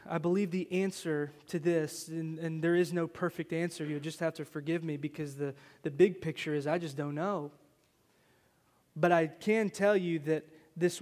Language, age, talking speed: English, 20-39, 195 wpm